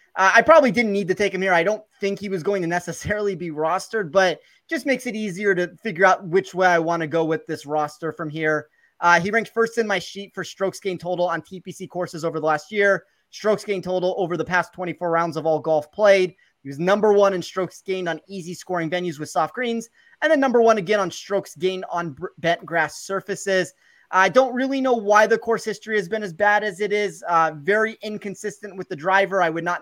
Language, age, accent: English, 30-49, American